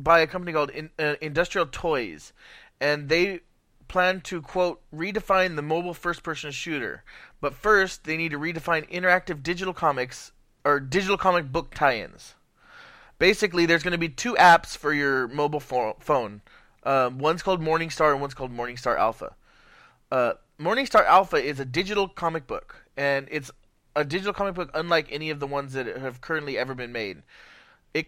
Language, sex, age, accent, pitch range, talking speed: English, male, 20-39, American, 140-175 Hz, 165 wpm